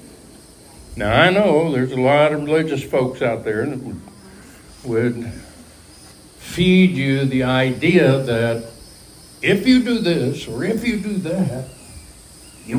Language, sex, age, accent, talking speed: English, male, 60-79, American, 130 wpm